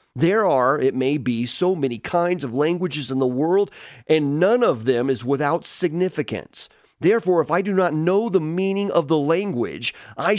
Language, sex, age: English, male, 30-49